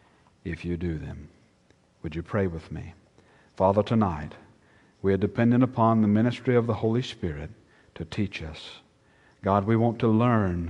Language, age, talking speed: English, 60-79, 165 wpm